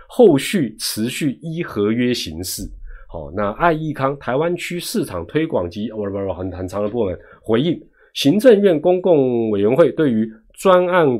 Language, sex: Chinese, male